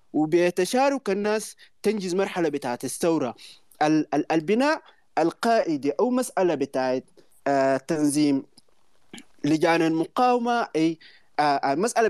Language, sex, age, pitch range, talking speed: Arabic, male, 30-49, 130-195 Hz, 80 wpm